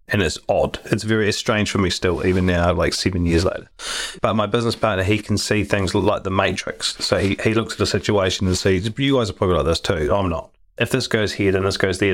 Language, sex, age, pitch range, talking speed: English, male, 30-49, 90-115 Hz, 255 wpm